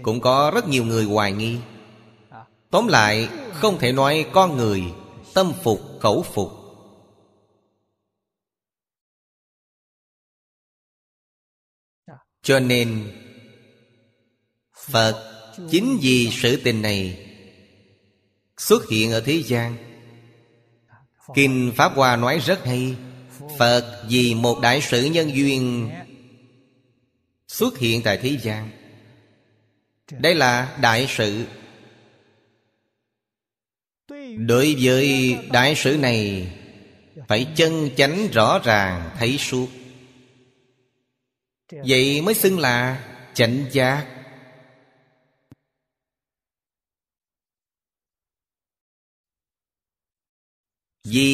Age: 30-49